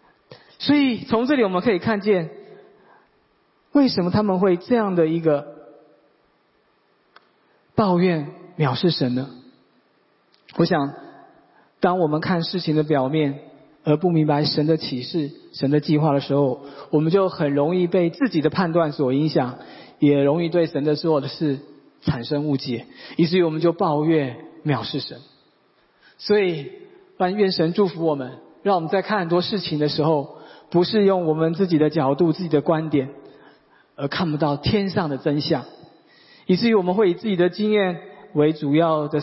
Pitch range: 145-185 Hz